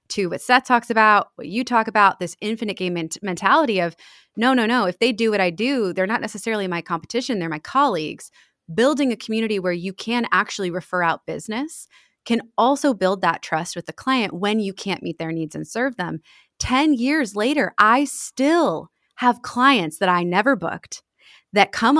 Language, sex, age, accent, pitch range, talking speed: English, female, 20-39, American, 180-235 Hz, 195 wpm